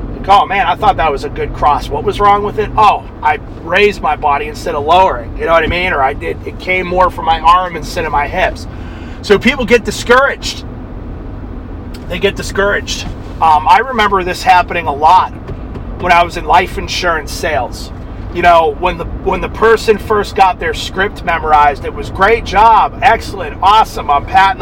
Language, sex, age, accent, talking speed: English, male, 30-49, American, 195 wpm